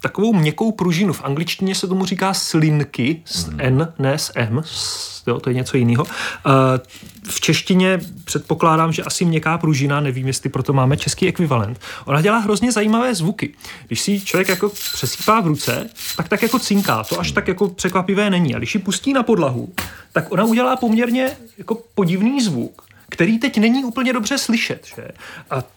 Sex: male